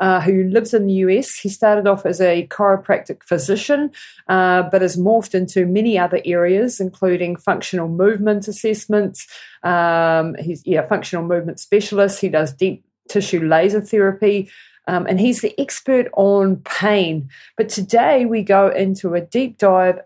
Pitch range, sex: 175-210 Hz, female